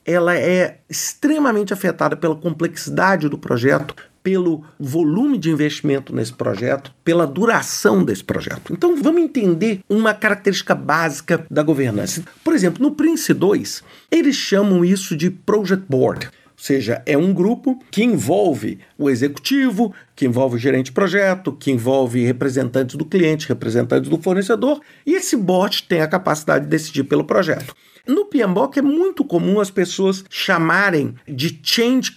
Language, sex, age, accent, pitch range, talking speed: Portuguese, male, 50-69, Brazilian, 150-215 Hz, 150 wpm